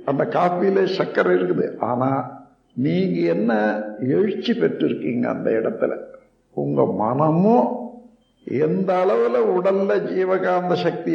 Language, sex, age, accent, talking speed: Tamil, male, 60-79, native, 95 wpm